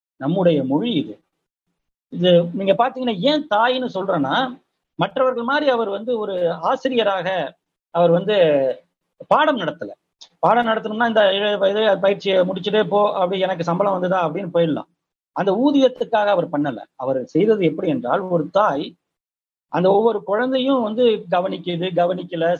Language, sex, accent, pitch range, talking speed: Tamil, male, native, 160-230 Hz, 125 wpm